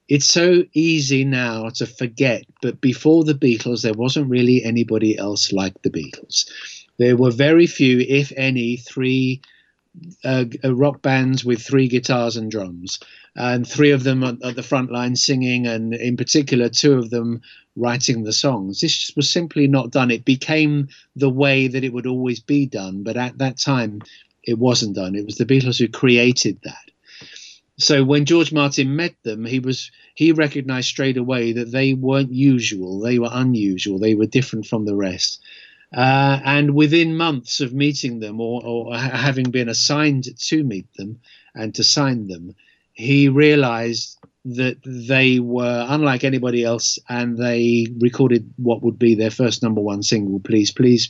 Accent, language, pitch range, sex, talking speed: British, English, 115-140 Hz, male, 170 wpm